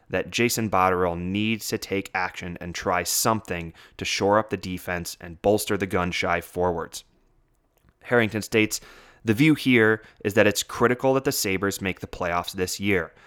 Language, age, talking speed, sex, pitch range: English, 20-39, 165 wpm, male, 90-110 Hz